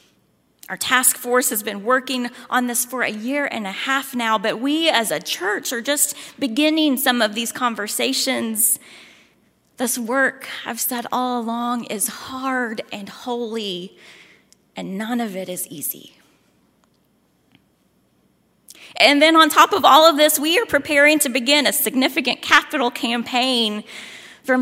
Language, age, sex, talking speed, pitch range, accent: English, 30-49, female, 150 wpm, 230-275 Hz, American